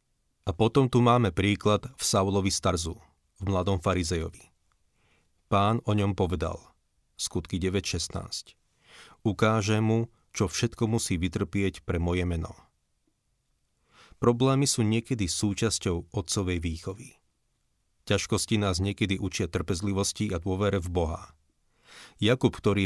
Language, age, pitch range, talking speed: Slovak, 40-59, 85-105 Hz, 115 wpm